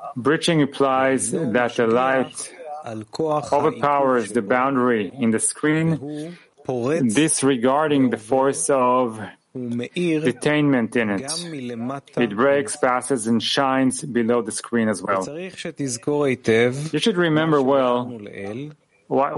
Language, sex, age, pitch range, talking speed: English, male, 30-49, 120-150 Hz, 100 wpm